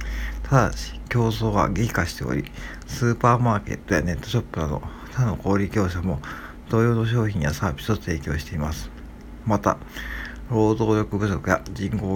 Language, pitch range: Japanese, 80-110 Hz